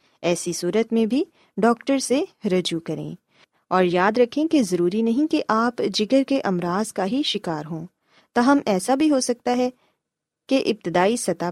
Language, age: Urdu, 20-39